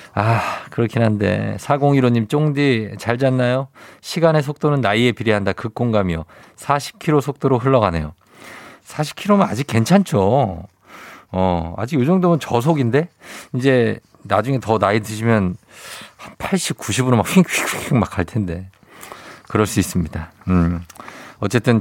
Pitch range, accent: 100-140 Hz, native